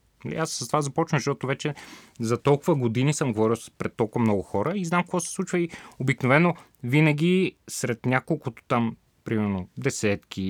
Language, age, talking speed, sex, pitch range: Bulgarian, 30-49, 165 wpm, male, 110-160 Hz